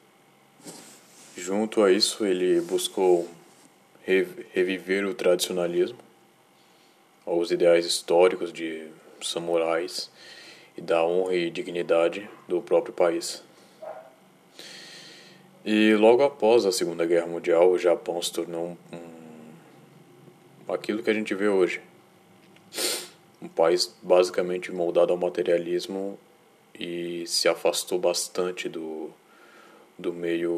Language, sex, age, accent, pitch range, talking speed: Portuguese, male, 20-39, Brazilian, 85-95 Hz, 100 wpm